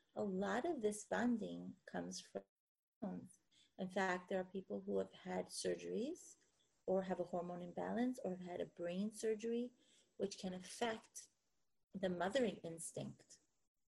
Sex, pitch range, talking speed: female, 185-235 Hz, 145 wpm